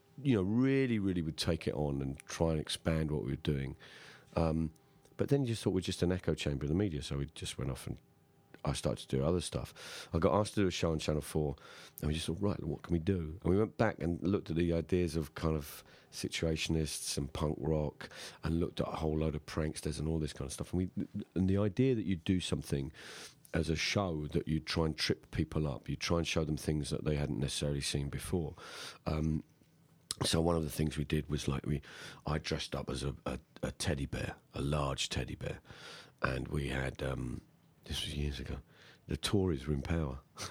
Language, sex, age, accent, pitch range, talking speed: English, male, 40-59, British, 75-90 Hz, 235 wpm